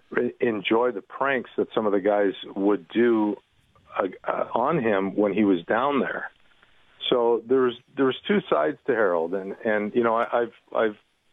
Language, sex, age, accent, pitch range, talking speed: English, male, 50-69, American, 95-120 Hz, 175 wpm